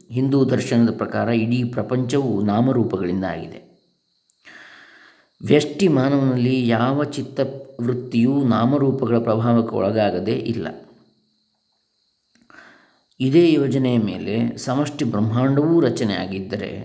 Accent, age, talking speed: native, 20-39, 80 wpm